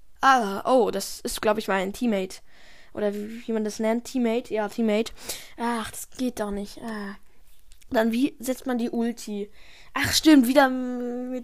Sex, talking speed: female, 175 wpm